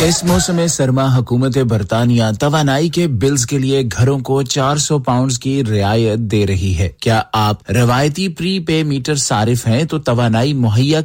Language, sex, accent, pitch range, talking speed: English, male, Indian, 115-145 Hz, 170 wpm